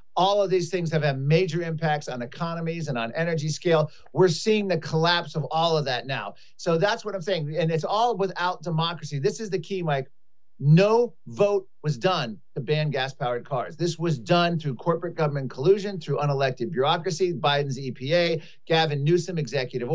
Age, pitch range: 40-59, 150-195 Hz